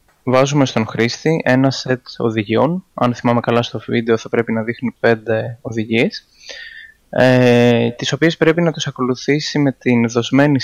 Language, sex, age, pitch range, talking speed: Greek, male, 20-39, 115-140 Hz, 150 wpm